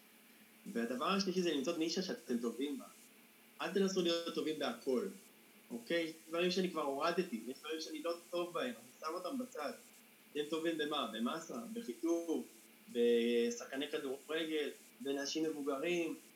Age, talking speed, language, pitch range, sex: 20-39, 140 wpm, Hebrew, 145-200 Hz, male